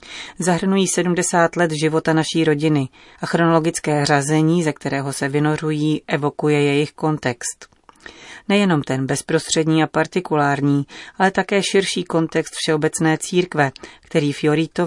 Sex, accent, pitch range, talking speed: female, native, 145-170 Hz, 115 wpm